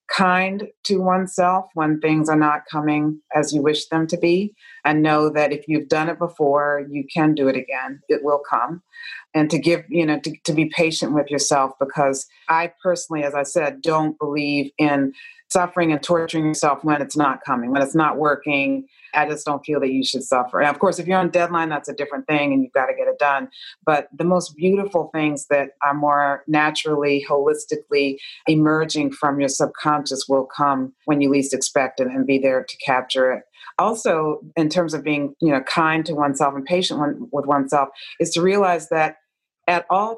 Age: 40-59